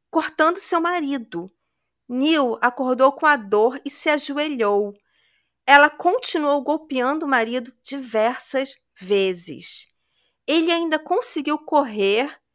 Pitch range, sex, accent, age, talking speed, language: 245-310 Hz, female, Brazilian, 40-59, 105 wpm, Portuguese